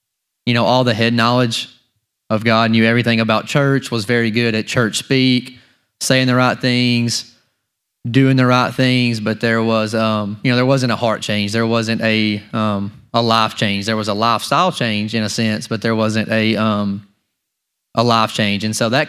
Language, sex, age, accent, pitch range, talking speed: English, male, 20-39, American, 110-125 Hz, 200 wpm